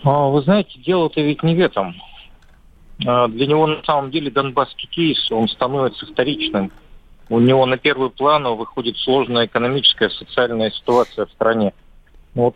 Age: 40-59